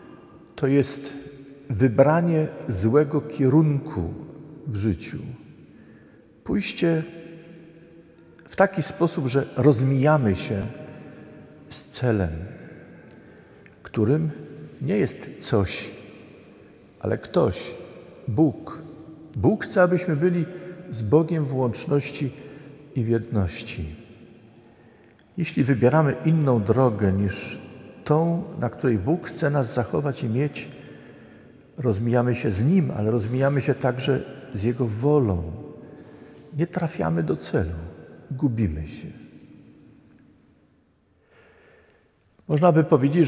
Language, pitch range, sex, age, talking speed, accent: Polish, 115-155 Hz, male, 50-69, 95 wpm, native